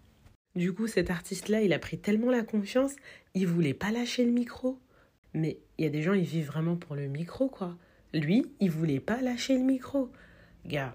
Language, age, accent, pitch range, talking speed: French, 30-49, French, 160-205 Hz, 210 wpm